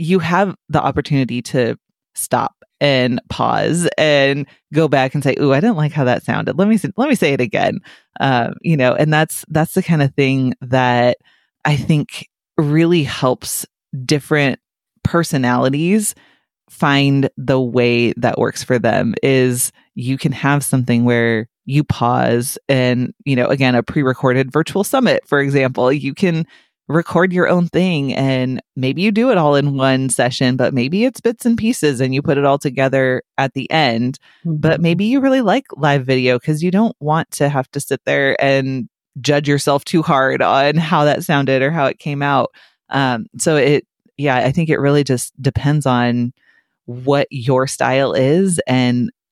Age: 30-49